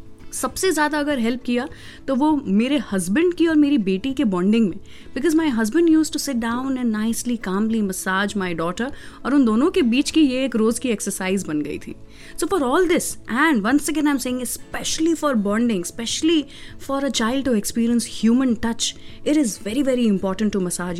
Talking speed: 200 wpm